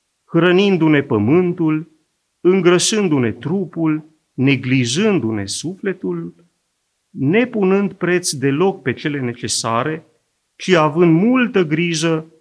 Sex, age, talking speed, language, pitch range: male, 40-59, 80 wpm, Romanian, 120-170 Hz